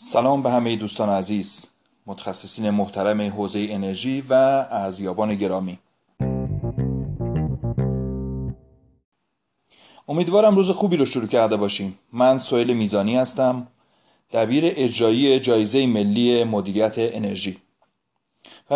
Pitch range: 110-155 Hz